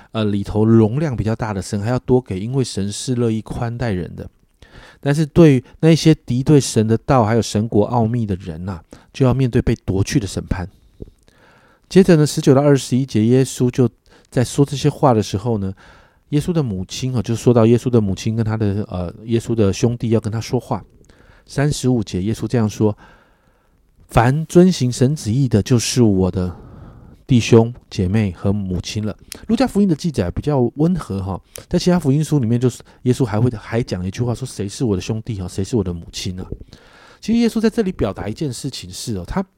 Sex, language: male, Chinese